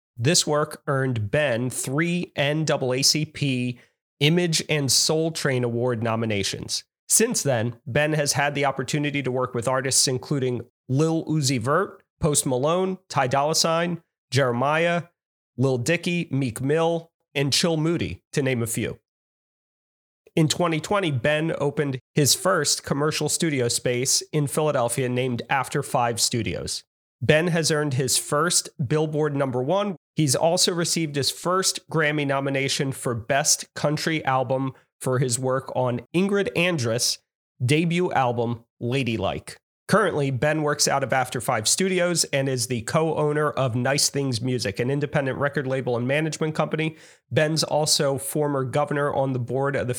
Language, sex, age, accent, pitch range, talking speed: English, male, 30-49, American, 130-160 Hz, 145 wpm